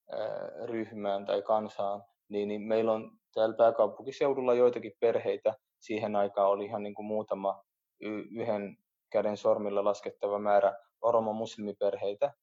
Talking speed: 115 wpm